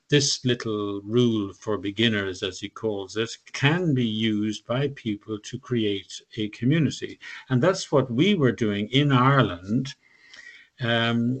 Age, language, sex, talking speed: 50-69, English, male, 140 wpm